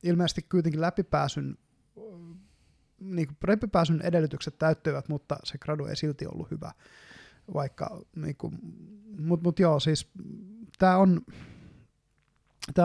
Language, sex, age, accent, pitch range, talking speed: Finnish, male, 20-39, native, 140-165 Hz, 90 wpm